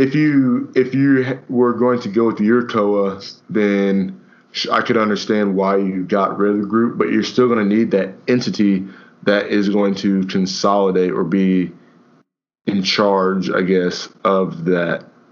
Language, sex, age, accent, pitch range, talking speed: English, male, 20-39, American, 95-110 Hz, 170 wpm